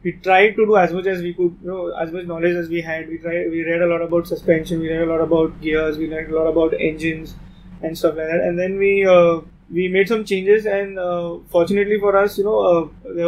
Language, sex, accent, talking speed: English, male, Indian, 260 wpm